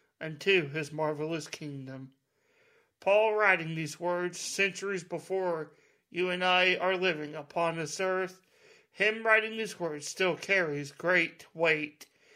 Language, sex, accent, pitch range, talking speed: English, male, American, 155-190 Hz, 125 wpm